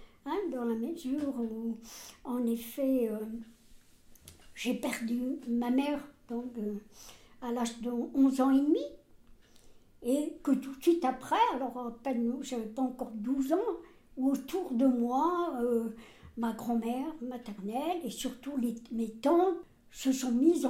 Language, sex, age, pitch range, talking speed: French, male, 60-79, 230-280 Hz, 150 wpm